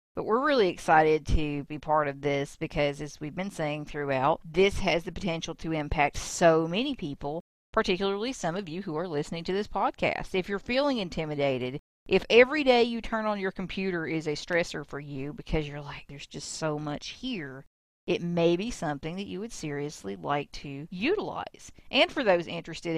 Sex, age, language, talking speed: female, 40-59, English, 195 wpm